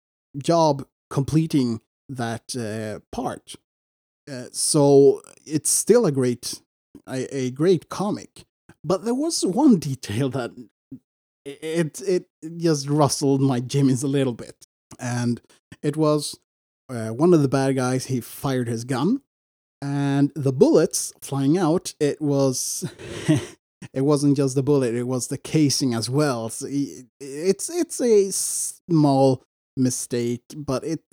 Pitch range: 125-155 Hz